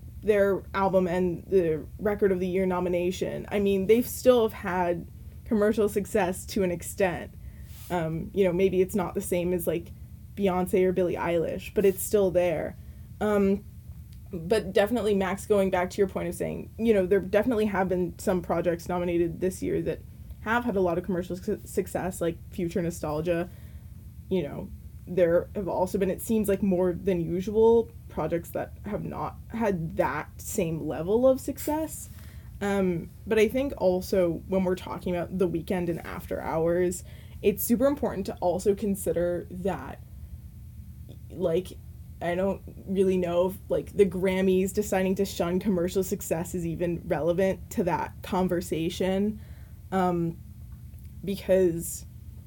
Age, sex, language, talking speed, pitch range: 20-39, female, English, 155 wpm, 175-200 Hz